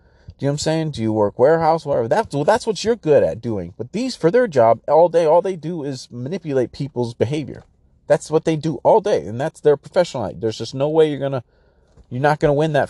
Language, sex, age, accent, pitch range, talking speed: English, male, 30-49, American, 95-140 Hz, 250 wpm